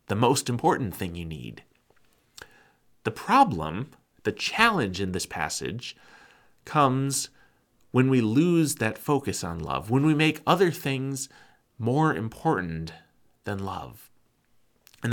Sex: male